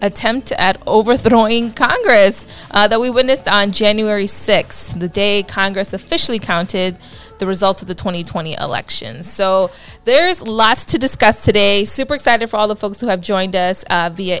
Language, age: English, 20-39